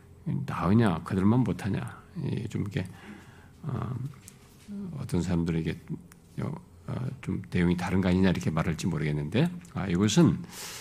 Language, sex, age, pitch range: Korean, male, 50-69, 95-140 Hz